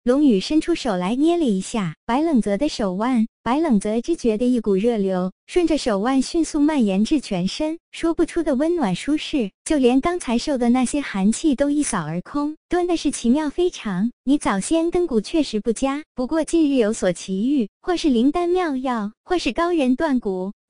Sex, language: male, Chinese